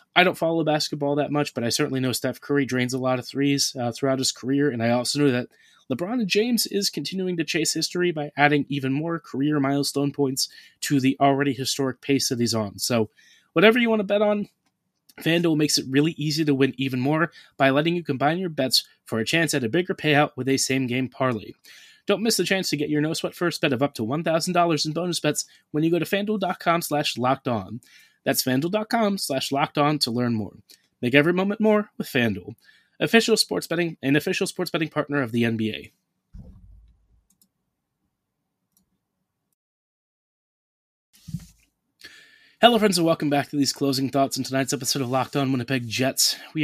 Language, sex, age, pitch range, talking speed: English, male, 30-49, 135-170 Hz, 190 wpm